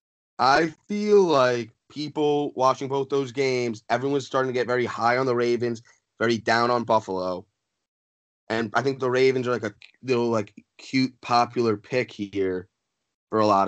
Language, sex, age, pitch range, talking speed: English, male, 20-39, 105-130 Hz, 165 wpm